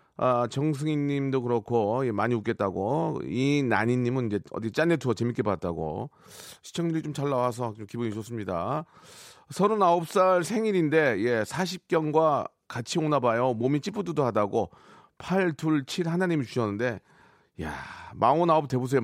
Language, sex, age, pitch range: Korean, male, 30-49, 120-165 Hz